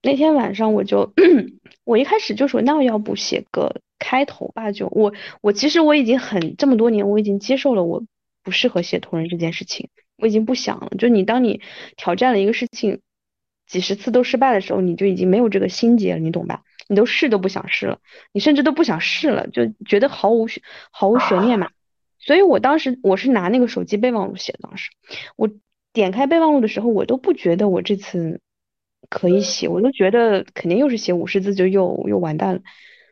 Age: 20-39